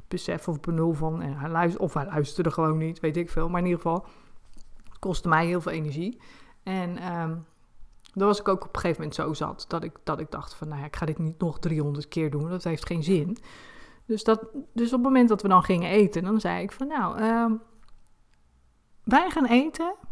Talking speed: 205 wpm